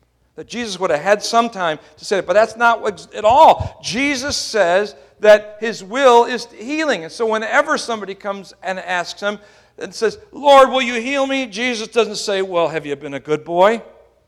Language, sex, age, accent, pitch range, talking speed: English, male, 60-79, American, 195-245 Hz, 195 wpm